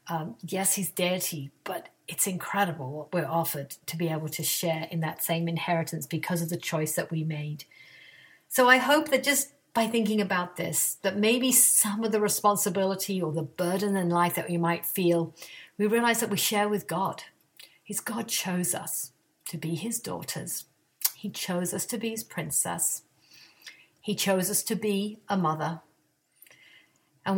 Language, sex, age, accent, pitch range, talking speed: English, female, 50-69, British, 160-205 Hz, 175 wpm